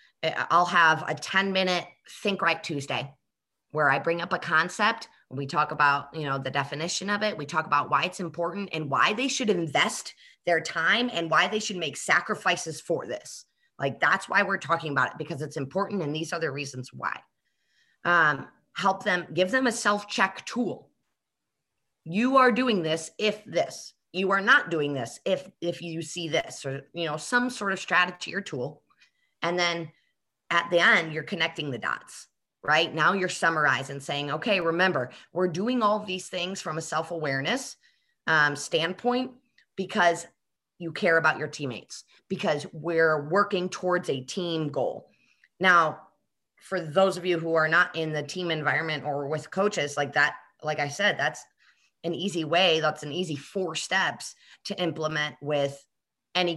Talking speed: 175 wpm